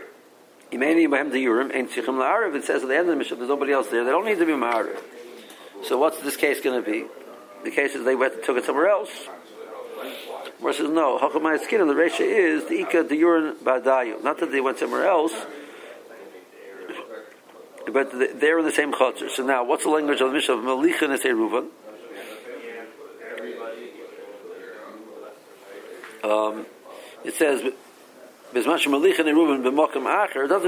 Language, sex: English, male